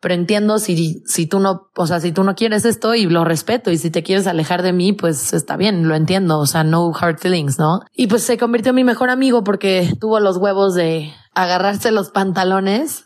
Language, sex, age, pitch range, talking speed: Spanish, female, 20-39, 170-210 Hz, 230 wpm